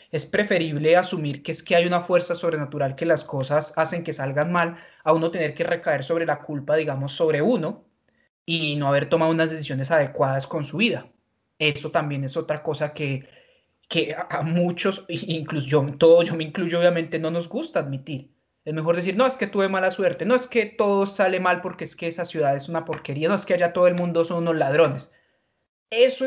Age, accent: 30-49, Colombian